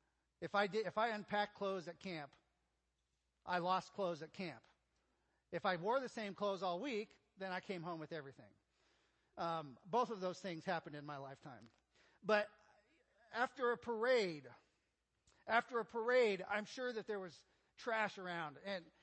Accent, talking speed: American, 160 wpm